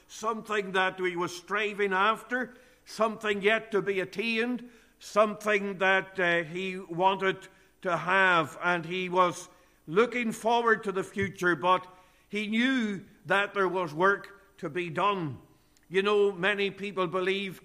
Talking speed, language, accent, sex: 140 wpm, English, Irish, male